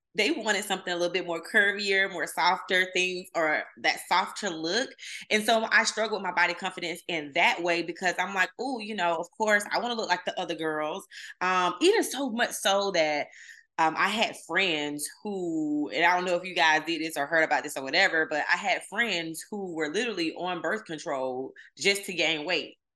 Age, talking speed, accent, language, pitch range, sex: 20-39, 215 wpm, American, English, 160-220 Hz, female